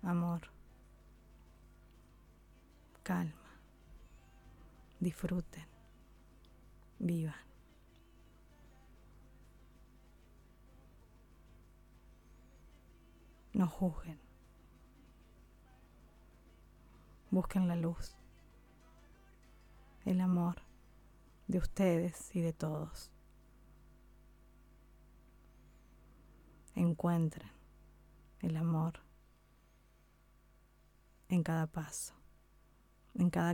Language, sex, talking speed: Spanish, female, 45 wpm